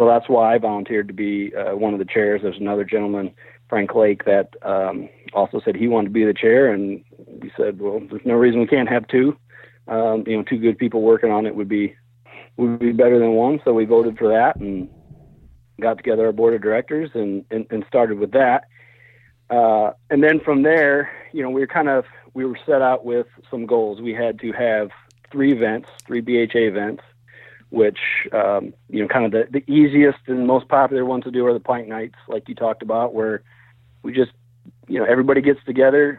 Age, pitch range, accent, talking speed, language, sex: 40-59, 110-130 Hz, American, 215 wpm, English, male